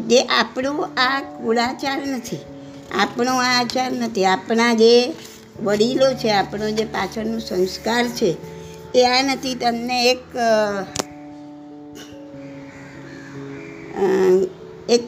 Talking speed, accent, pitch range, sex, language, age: 90 wpm, American, 185-235 Hz, male, Gujarati, 60-79